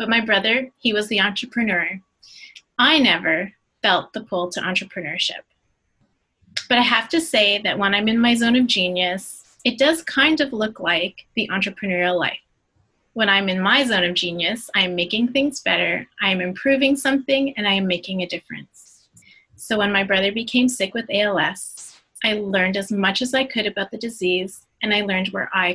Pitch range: 185-235 Hz